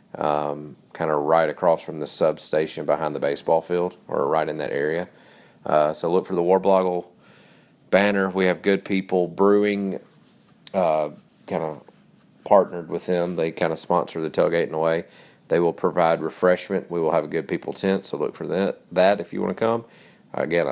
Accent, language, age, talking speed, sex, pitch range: American, English, 40-59, 190 wpm, male, 80-95 Hz